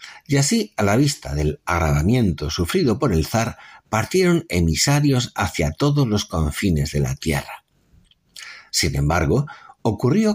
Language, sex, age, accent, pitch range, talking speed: Spanish, male, 60-79, Spanish, 80-135 Hz, 135 wpm